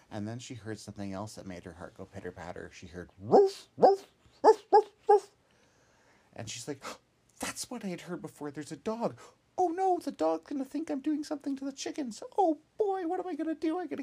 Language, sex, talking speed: English, male, 225 wpm